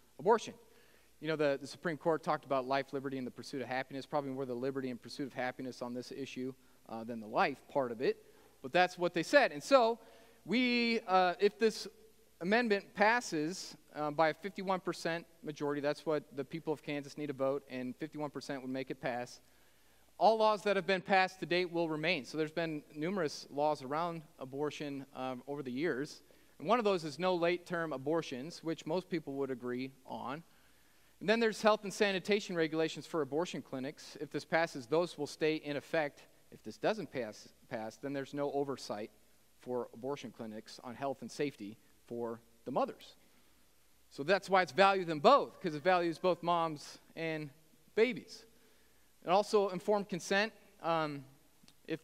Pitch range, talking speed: 140-185 Hz, 185 wpm